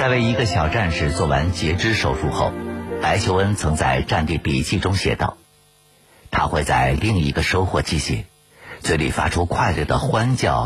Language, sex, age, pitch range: Chinese, male, 60-79, 75-110 Hz